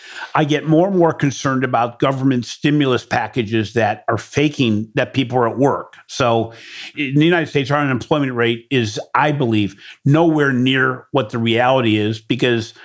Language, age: English, 50-69